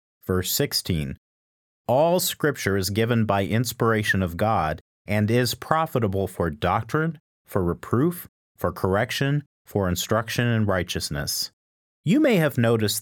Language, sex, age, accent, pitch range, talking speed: English, male, 40-59, American, 95-125 Hz, 125 wpm